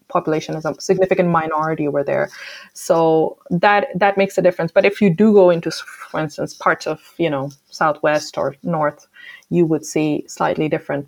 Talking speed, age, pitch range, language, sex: 180 wpm, 20-39, 180-225 Hz, English, female